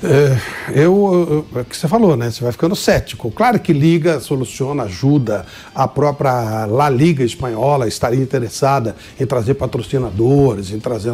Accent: Brazilian